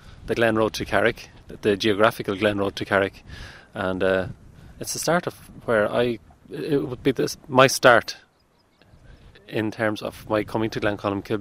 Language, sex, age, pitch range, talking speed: English, male, 30-49, 100-115 Hz, 180 wpm